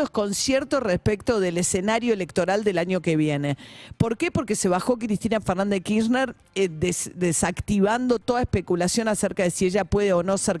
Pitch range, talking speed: 185-235 Hz, 175 wpm